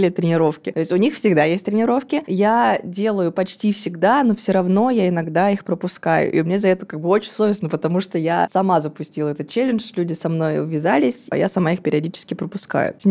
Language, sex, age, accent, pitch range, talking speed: Russian, female, 20-39, native, 165-200 Hz, 205 wpm